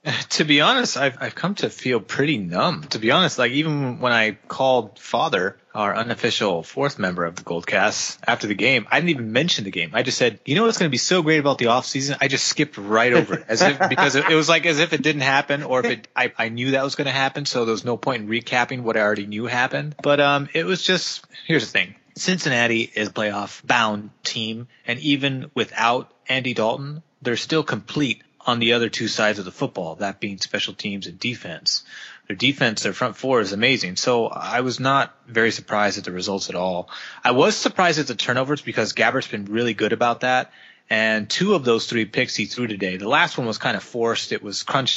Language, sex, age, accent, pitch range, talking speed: English, male, 30-49, American, 110-140 Hz, 230 wpm